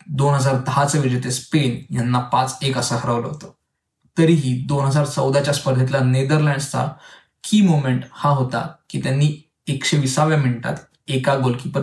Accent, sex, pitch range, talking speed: native, male, 125-150 Hz, 70 wpm